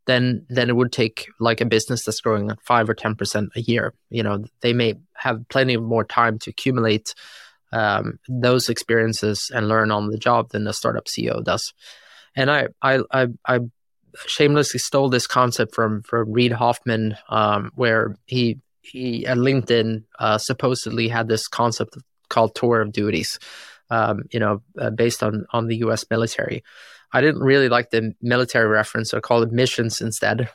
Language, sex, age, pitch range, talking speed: English, male, 20-39, 110-125 Hz, 180 wpm